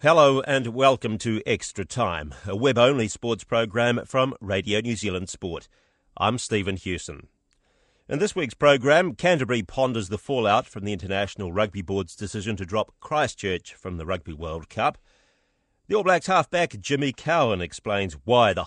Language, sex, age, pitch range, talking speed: English, male, 40-59, 95-125 Hz, 160 wpm